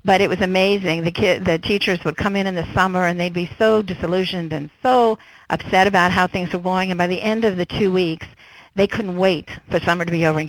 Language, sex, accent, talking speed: English, female, American, 250 wpm